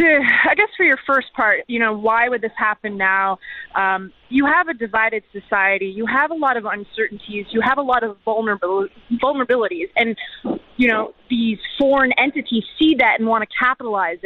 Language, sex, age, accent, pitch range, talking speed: English, female, 20-39, American, 225-275 Hz, 185 wpm